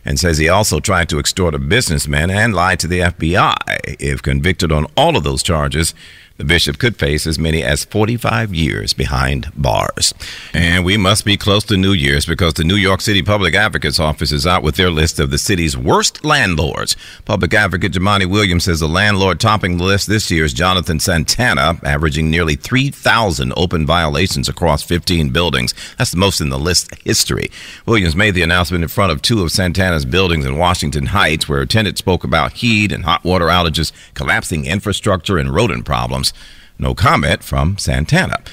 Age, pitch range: 50-69, 75-100 Hz